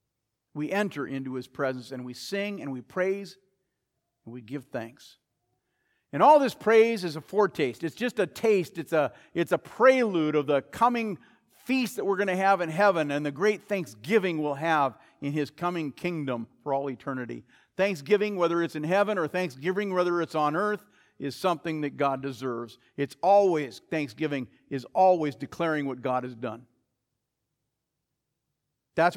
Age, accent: 50-69, American